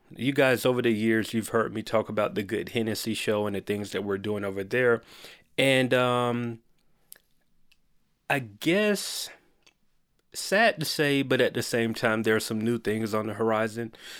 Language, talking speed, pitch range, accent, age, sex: English, 180 wpm, 105-125 Hz, American, 30-49, male